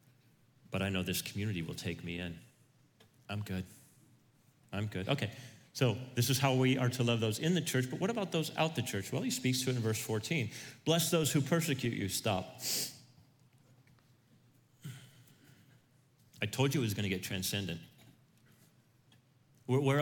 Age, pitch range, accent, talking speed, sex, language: 40-59, 115-140 Hz, American, 170 wpm, male, English